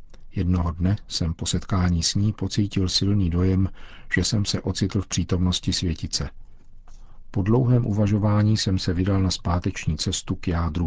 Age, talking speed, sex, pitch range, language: 50-69, 155 wpm, male, 85-100 Hz, Czech